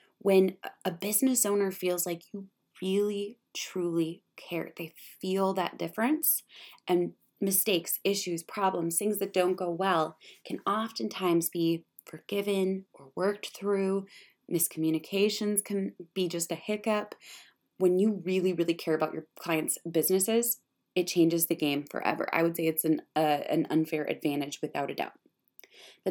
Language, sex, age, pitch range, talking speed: English, female, 20-39, 160-200 Hz, 145 wpm